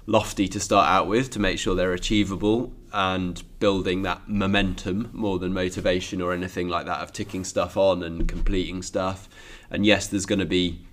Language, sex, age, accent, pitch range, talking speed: English, male, 20-39, British, 85-100 Hz, 185 wpm